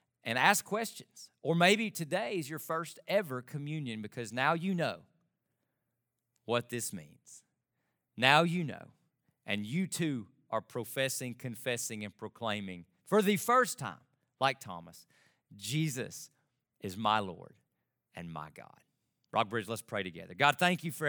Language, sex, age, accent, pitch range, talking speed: English, male, 40-59, American, 120-165 Hz, 140 wpm